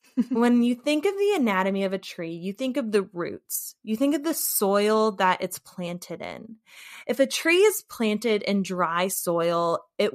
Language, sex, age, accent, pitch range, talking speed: English, female, 20-39, American, 180-240 Hz, 190 wpm